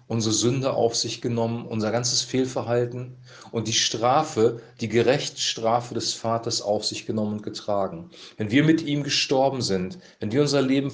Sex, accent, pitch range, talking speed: male, German, 110-130 Hz, 165 wpm